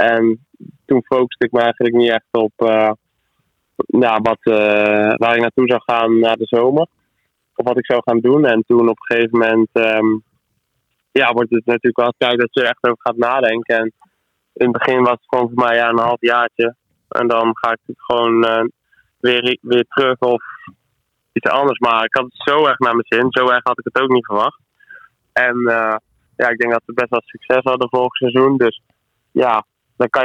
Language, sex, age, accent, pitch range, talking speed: Dutch, male, 20-39, Dutch, 115-125 Hz, 200 wpm